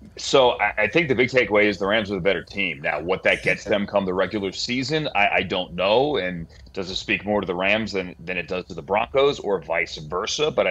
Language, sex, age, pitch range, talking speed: English, male, 30-49, 90-105 Hz, 250 wpm